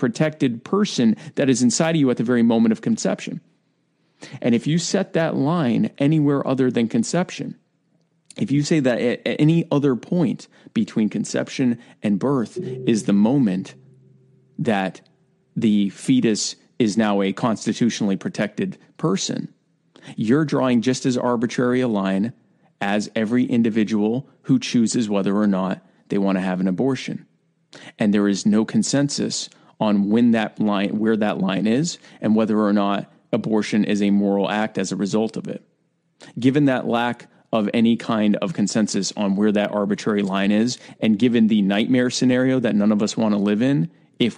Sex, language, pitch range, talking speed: male, English, 105-160 Hz, 165 wpm